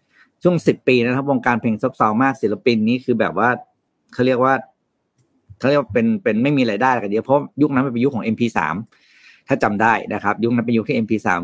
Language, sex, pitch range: Thai, male, 110-140 Hz